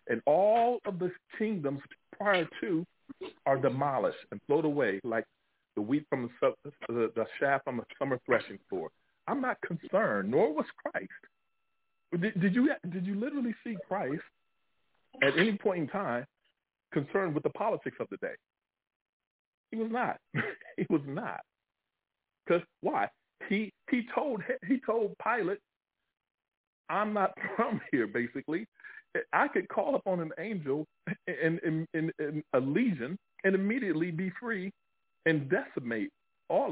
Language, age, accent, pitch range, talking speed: English, 40-59, American, 150-225 Hz, 145 wpm